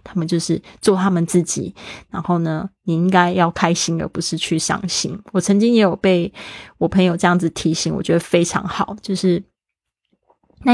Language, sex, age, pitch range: Chinese, female, 20-39, 180-215 Hz